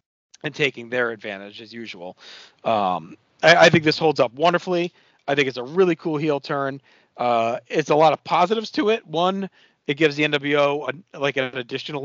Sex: male